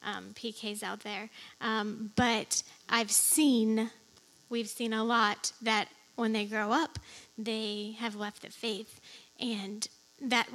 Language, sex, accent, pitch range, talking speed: English, female, American, 220-245 Hz, 135 wpm